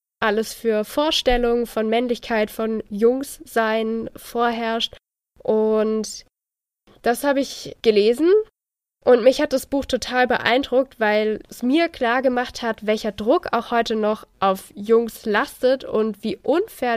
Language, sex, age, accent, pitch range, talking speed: German, female, 10-29, German, 210-260 Hz, 130 wpm